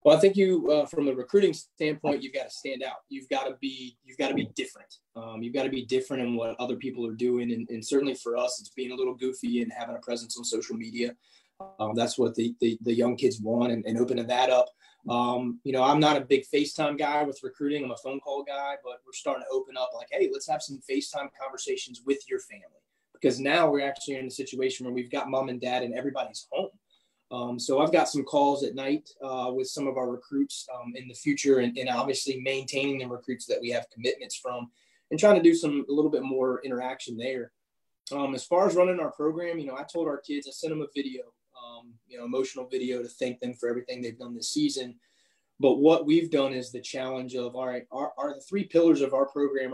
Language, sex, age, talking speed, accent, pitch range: English, male, 20-39, 245 wpm, American, 125-145 Hz